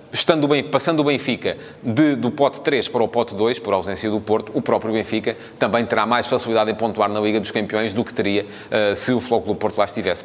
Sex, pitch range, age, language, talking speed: male, 105-130 Hz, 30-49, Portuguese, 240 wpm